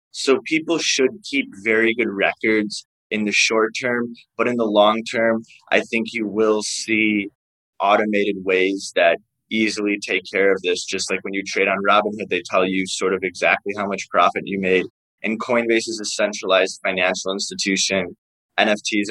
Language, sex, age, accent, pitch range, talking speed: English, male, 20-39, American, 100-115 Hz, 175 wpm